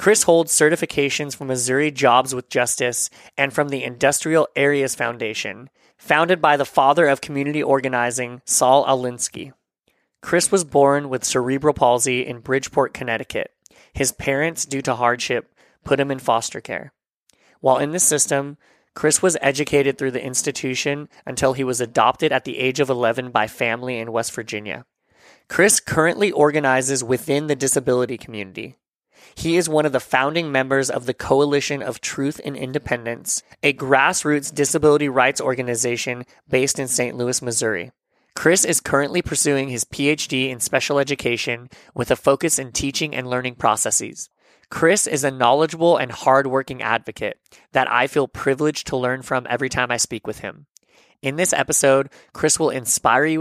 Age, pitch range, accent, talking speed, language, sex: 20-39, 125-145 Hz, American, 160 wpm, English, male